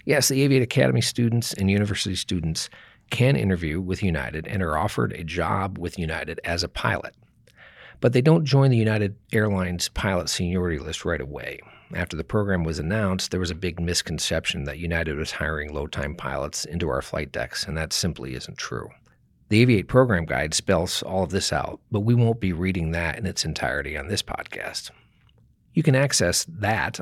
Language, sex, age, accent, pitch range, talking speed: English, male, 40-59, American, 80-110 Hz, 185 wpm